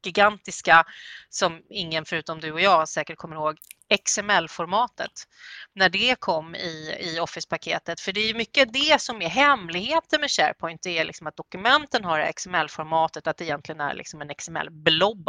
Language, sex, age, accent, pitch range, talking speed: Swedish, female, 30-49, native, 160-200 Hz, 165 wpm